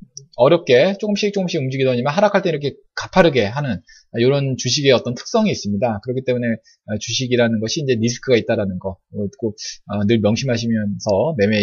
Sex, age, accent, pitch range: male, 20-39, native, 115-170 Hz